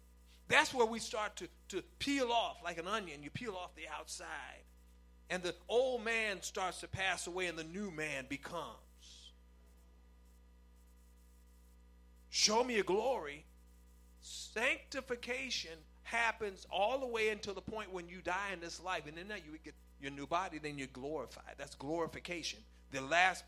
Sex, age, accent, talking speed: male, 40-59, American, 155 wpm